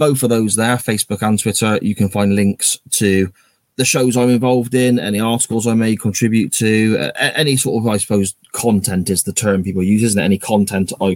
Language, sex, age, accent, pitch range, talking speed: English, male, 20-39, British, 100-125 Hz, 210 wpm